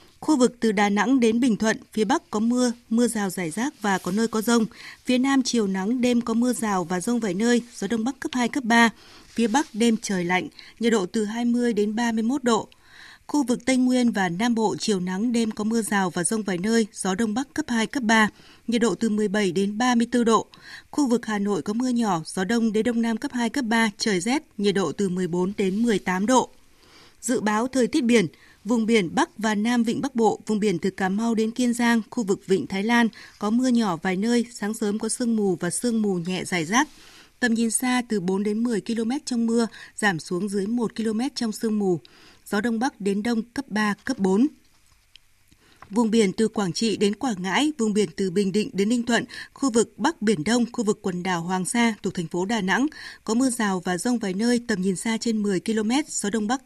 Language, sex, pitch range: Vietnamese, female, 205-240 Hz